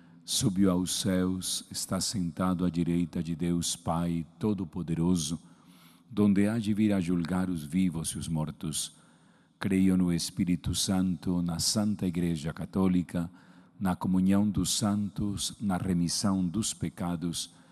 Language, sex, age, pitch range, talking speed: Portuguese, male, 40-59, 85-95 Hz, 130 wpm